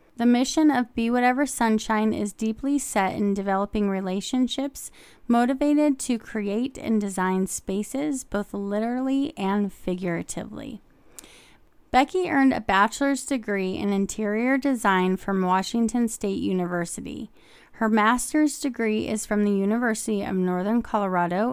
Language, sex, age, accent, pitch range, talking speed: English, female, 30-49, American, 195-245 Hz, 125 wpm